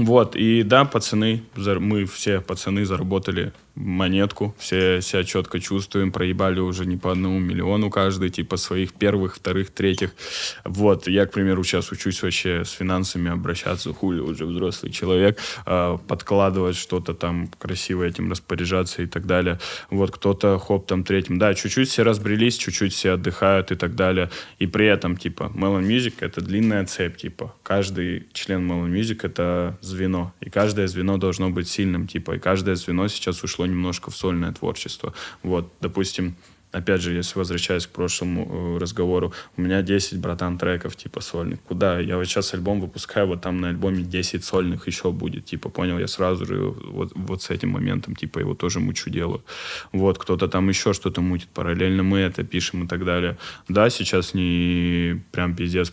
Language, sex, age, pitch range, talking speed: Russian, male, 10-29, 90-95 Hz, 170 wpm